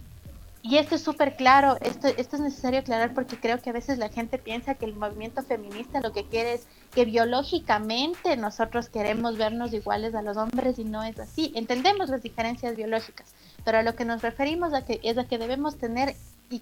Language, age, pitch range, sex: Spanish, 30-49, 220-265 Hz, female